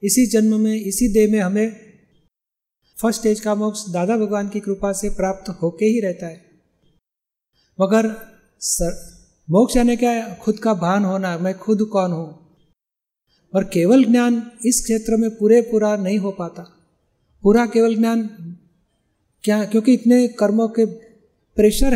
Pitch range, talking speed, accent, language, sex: 190-225 Hz, 150 wpm, native, Hindi, male